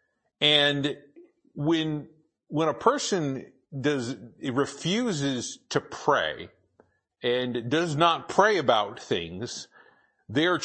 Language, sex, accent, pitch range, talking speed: English, male, American, 115-145 Hz, 90 wpm